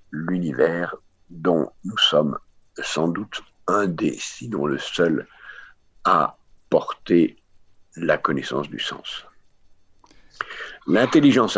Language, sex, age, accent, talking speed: English, male, 60-79, French, 95 wpm